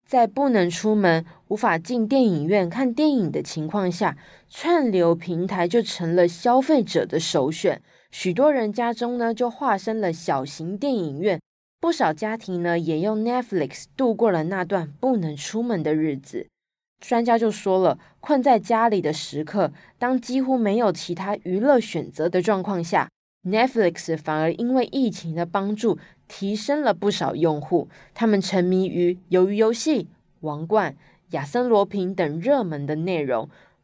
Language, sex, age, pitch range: Chinese, female, 20-39, 170-235 Hz